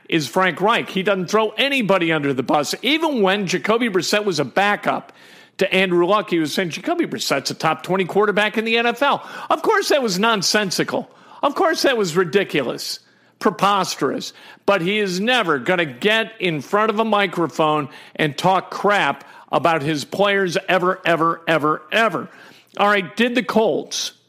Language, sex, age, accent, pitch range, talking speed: English, male, 50-69, American, 155-205 Hz, 175 wpm